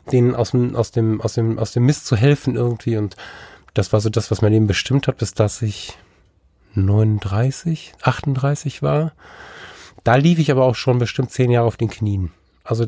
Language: German